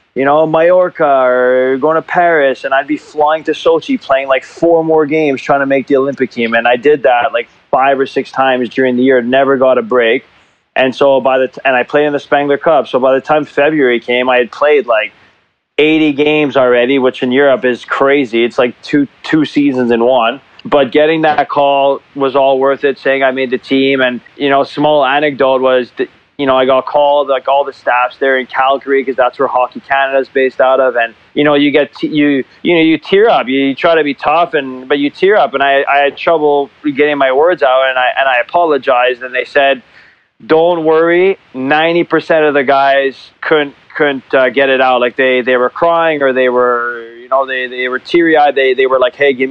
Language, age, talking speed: English, 20-39, 230 wpm